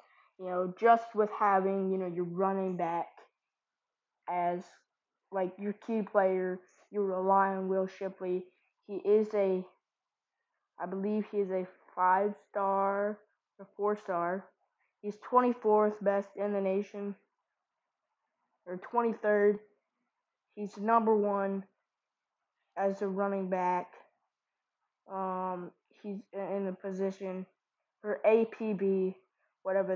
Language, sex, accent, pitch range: English, female, American, 185-215 Hz